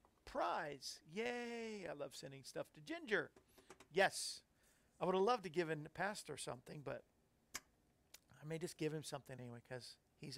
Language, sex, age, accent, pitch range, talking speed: English, male, 50-69, American, 150-200 Hz, 170 wpm